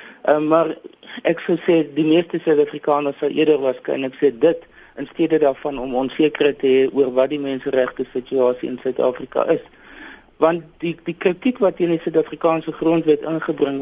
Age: 50-69